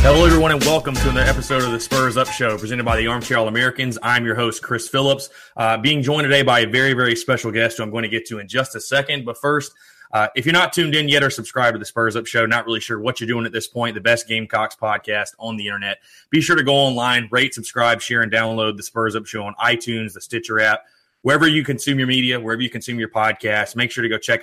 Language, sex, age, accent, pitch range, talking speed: English, male, 30-49, American, 110-130 Hz, 265 wpm